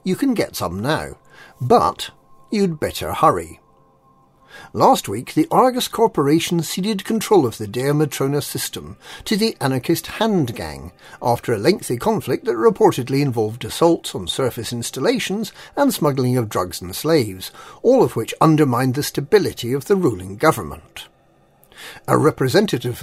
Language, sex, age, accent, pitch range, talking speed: English, male, 50-69, British, 125-200 Hz, 145 wpm